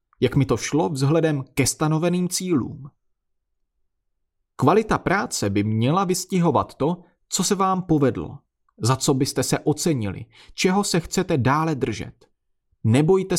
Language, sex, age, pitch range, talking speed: Czech, male, 30-49, 115-165 Hz, 130 wpm